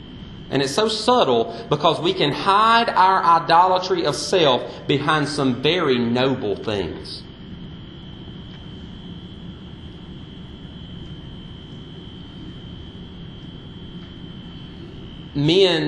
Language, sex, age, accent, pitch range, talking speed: English, male, 40-59, American, 115-145 Hz, 70 wpm